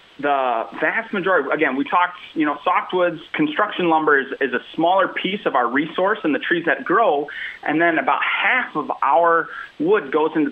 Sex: male